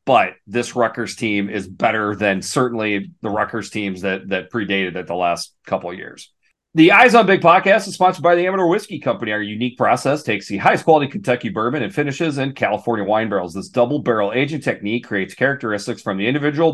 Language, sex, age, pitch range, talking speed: English, male, 30-49, 110-155 Hz, 205 wpm